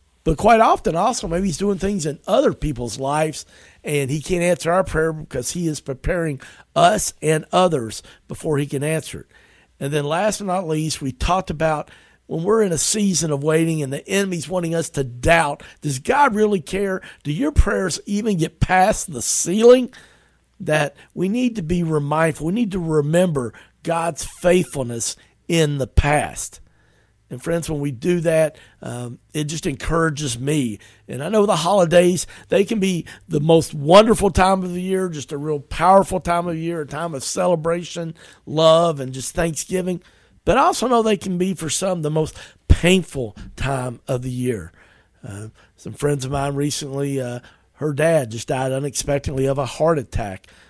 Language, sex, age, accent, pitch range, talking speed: English, male, 50-69, American, 130-170 Hz, 180 wpm